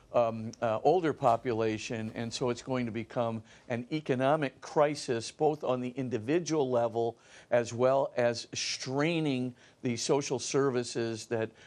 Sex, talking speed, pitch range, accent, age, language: male, 135 wpm, 115-135 Hz, American, 50-69, English